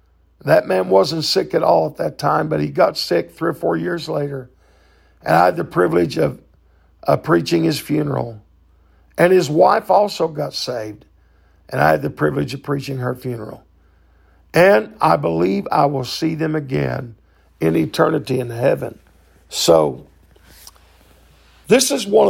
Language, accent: English, American